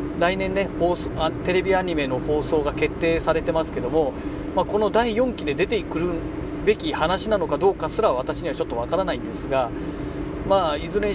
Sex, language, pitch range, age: male, Japanese, 145-195 Hz, 40-59